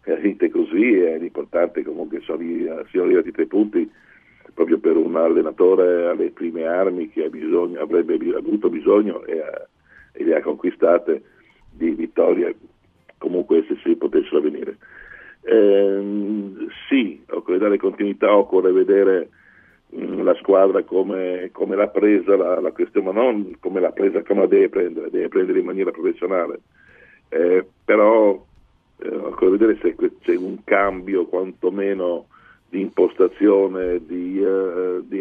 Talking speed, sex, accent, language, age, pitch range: 140 wpm, male, native, Italian, 50-69, 280-400 Hz